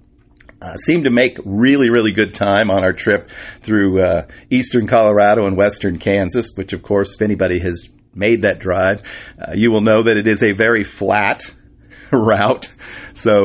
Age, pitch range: 50-69, 95-110 Hz